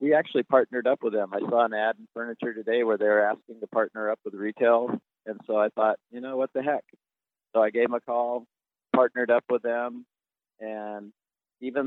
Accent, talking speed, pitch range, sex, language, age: American, 215 wpm, 105-120 Hz, male, English, 50-69